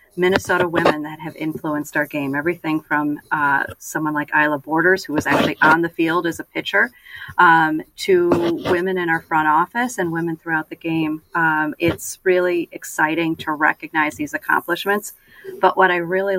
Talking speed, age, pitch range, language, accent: 170 wpm, 40-59, 155-180 Hz, English, American